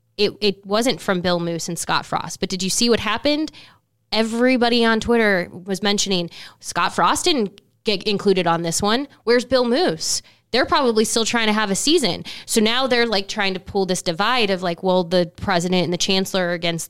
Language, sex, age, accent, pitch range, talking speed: English, female, 10-29, American, 175-220 Hz, 205 wpm